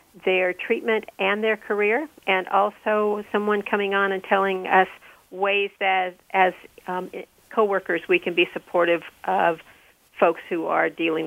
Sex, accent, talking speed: female, American, 145 wpm